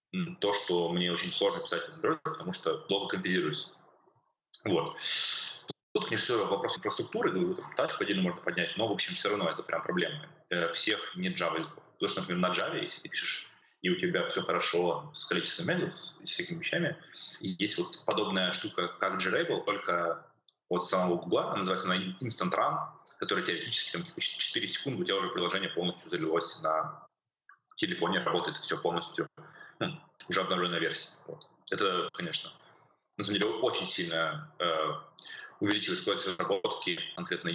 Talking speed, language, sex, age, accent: 150 wpm, Russian, male, 20-39, native